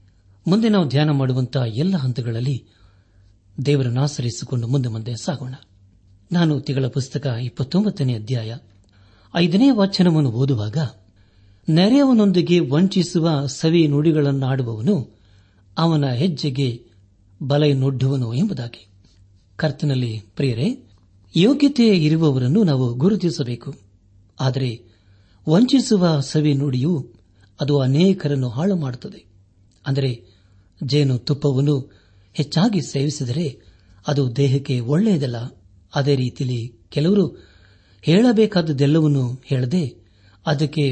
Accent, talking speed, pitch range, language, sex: native, 80 wpm, 110-165 Hz, Kannada, male